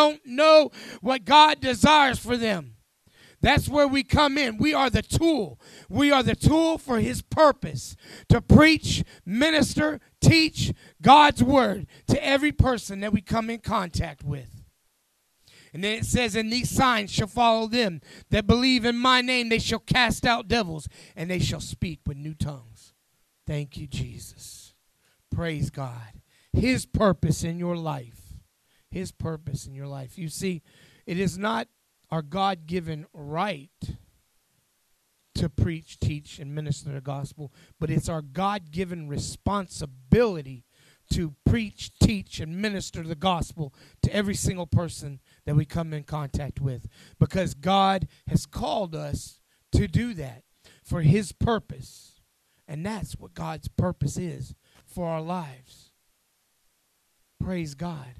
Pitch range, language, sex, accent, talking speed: 140-225 Hz, English, male, American, 145 wpm